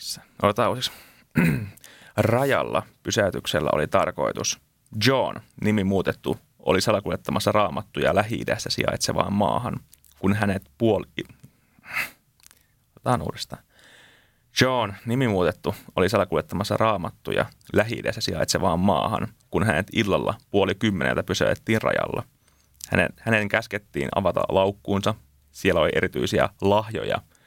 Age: 30-49